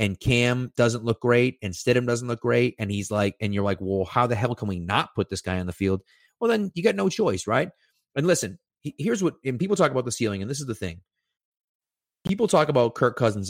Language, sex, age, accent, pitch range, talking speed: English, male, 30-49, American, 100-140 Hz, 250 wpm